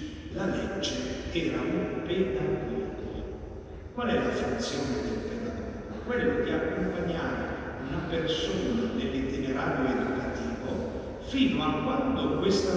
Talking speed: 100 wpm